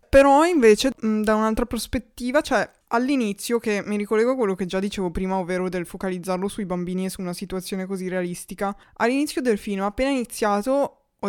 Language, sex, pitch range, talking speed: Italian, female, 195-235 Hz, 175 wpm